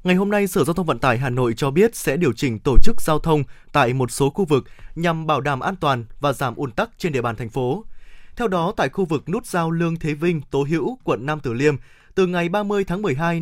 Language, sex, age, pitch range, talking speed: Vietnamese, male, 20-39, 145-195 Hz, 265 wpm